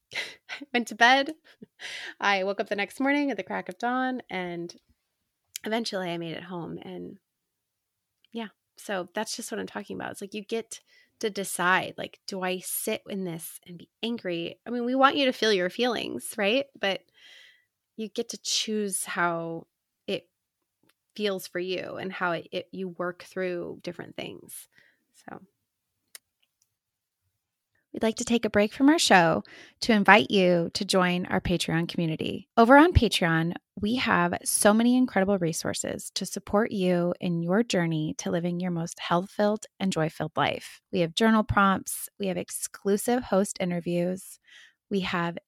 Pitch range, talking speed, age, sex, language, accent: 175-225 Hz, 165 wpm, 20-39, female, English, American